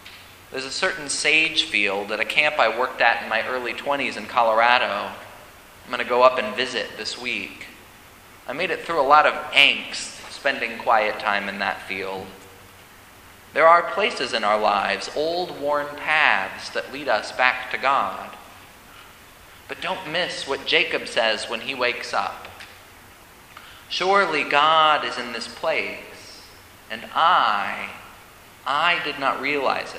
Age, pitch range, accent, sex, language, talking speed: 30-49, 105-160 Hz, American, male, English, 155 wpm